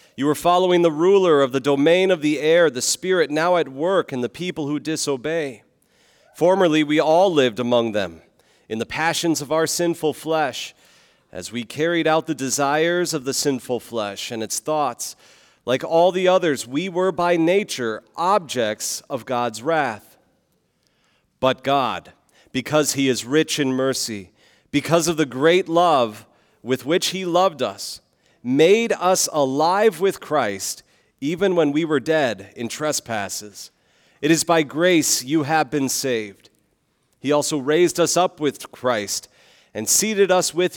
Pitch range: 125-170 Hz